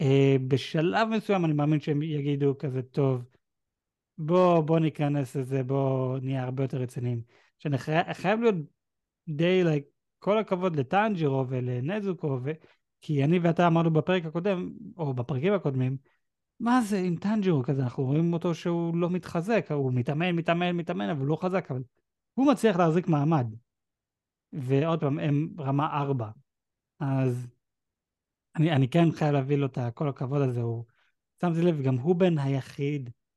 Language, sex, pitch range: Hebrew, male, 135-170 Hz